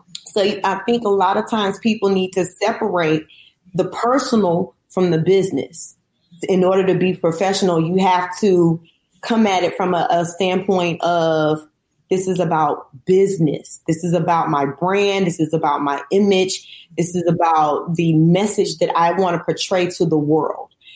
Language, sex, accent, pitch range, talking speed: English, female, American, 165-200 Hz, 170 wpm